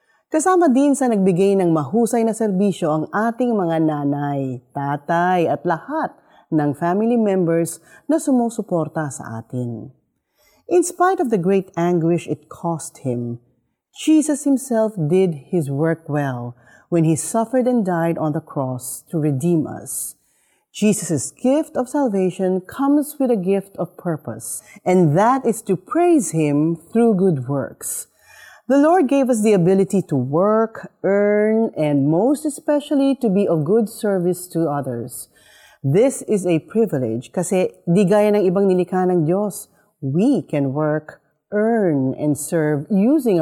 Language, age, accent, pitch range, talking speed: Filipino, 40-59, native, 155-240 Hz, 140 wpm